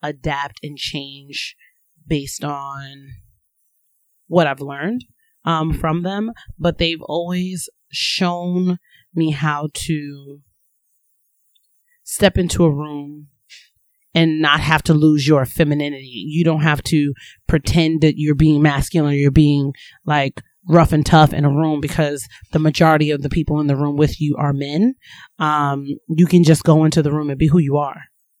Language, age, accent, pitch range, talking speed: English, 30-49, American, 140-160 Hz, 155 wpm